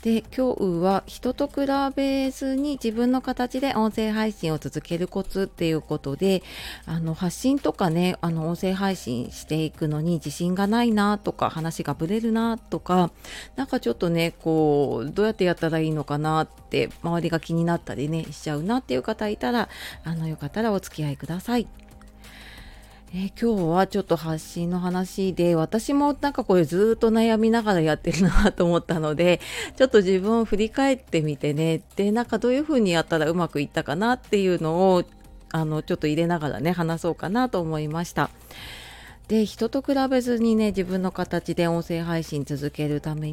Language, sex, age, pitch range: Japanese, female, 30-49, 160-220 Hz